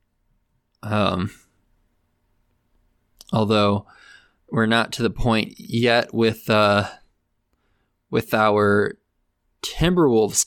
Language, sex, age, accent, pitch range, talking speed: English, male, 20-39, American, 105-125 Hz, 75 wpm